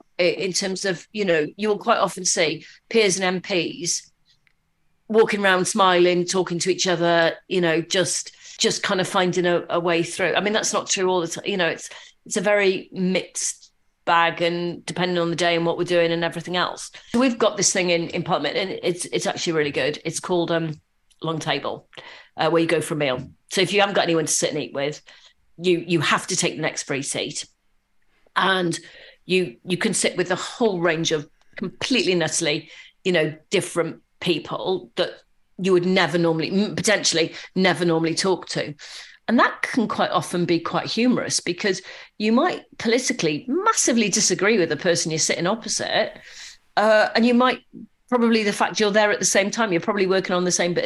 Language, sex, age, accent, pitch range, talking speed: English, female, 40-59, British, 170-205 Hz, 200 wpm